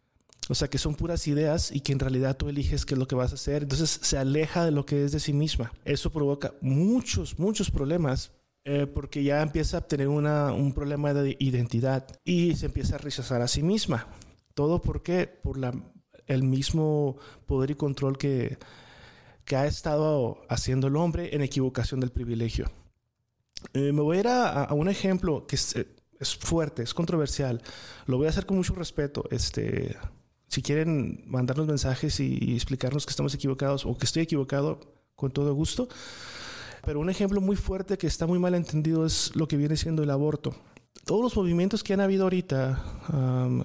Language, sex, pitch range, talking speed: Spanish, male, 135-160 Hz, 190 wpm